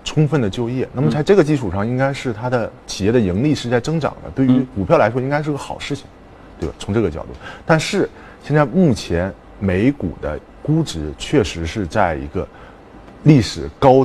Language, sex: Chinese, male